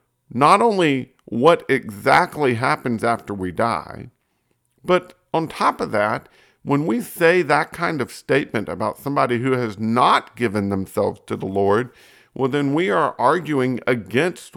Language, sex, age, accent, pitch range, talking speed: English, male, 50-69, American, 115-145 Hz, 150 wpm